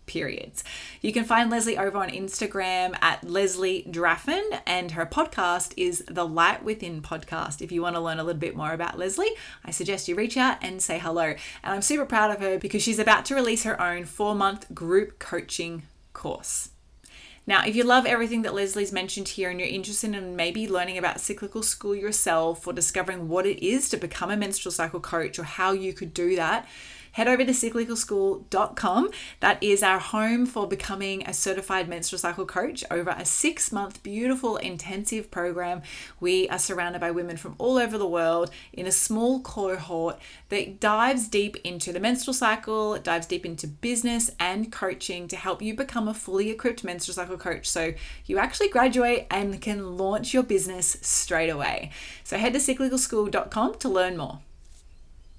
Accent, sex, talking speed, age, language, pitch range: Australian, female, 180 wpm, 20-39, English, 175-220 Hz